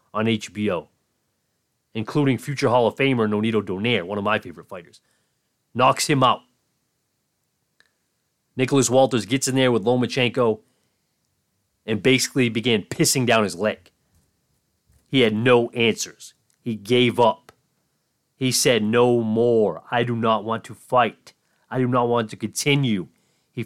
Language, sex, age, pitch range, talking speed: English, male, 30-49, 110-135 Hz, 140 wpm